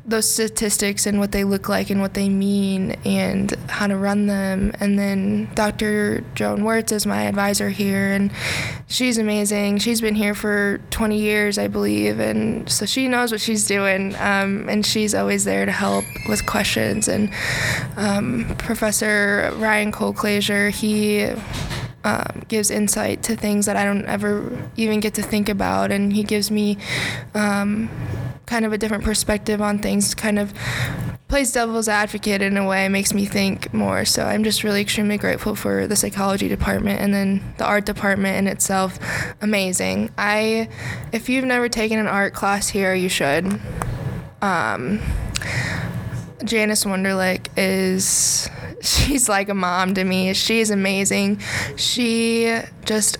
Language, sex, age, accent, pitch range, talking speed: English, female, 20-39, American, 190-215 Hz, 155 wpm